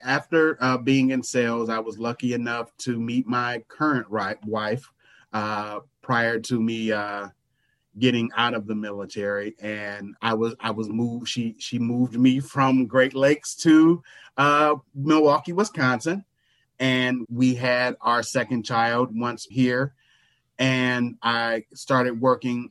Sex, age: male, 30-49